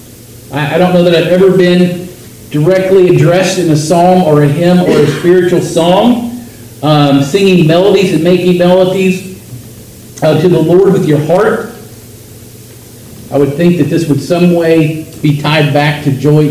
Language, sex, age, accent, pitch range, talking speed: English, male, 40-59, American, 120-165 Hz, 165 wpm